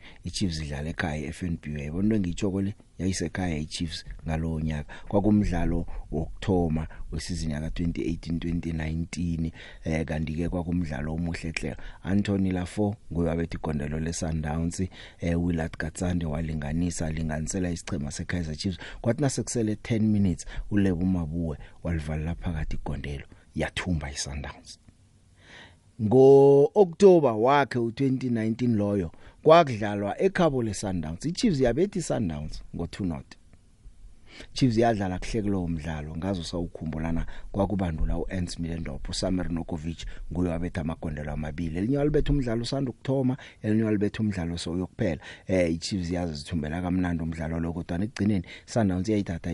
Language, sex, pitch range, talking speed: English, male, 80-110 Hz, 135 wpm